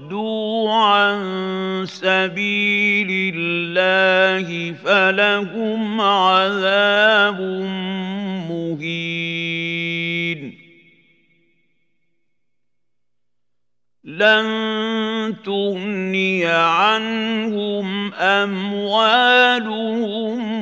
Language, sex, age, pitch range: Arabic, male, 50-69, 170-205 Hz